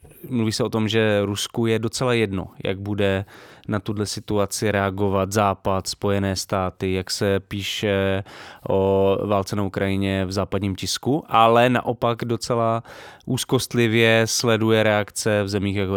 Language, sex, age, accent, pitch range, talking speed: English, male, 20-39, Czech, 100-120 Hz, 140 wpm